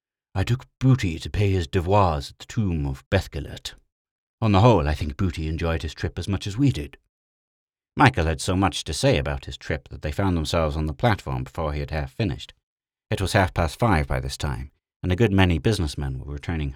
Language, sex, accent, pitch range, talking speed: English, male, British, 70-95 Hz, 215 wpm